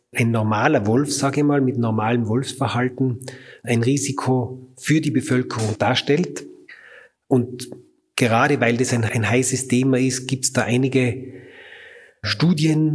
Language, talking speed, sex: German, 135 wpm, male